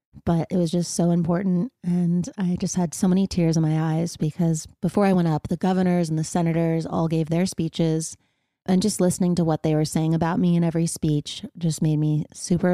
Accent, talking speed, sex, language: American, 220 wpm, female, English